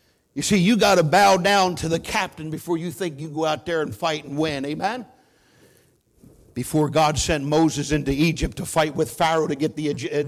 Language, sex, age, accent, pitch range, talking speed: English, male, 50-69, American, 145-185 Hz, 210 wpm